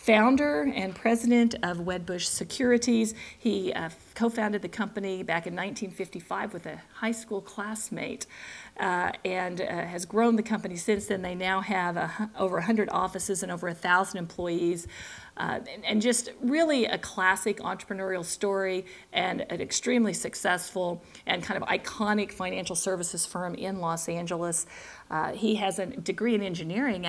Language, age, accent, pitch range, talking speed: English, 50-69, American, 180-210 Hz, 155 wpm